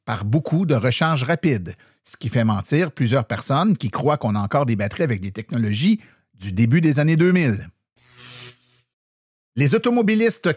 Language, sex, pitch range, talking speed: French, male, 125-165 Hz, 160 wpm